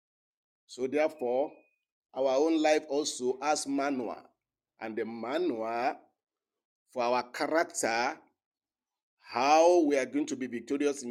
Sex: male